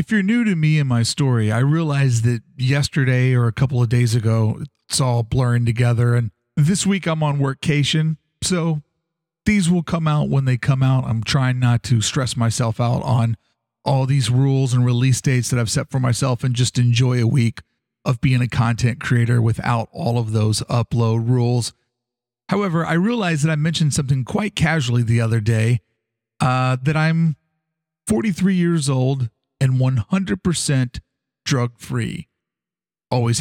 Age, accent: 40-59, American